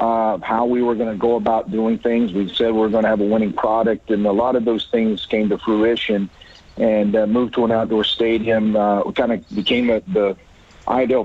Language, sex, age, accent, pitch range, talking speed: English, male, 50-69, American, 110-130 Hz, 225 wpm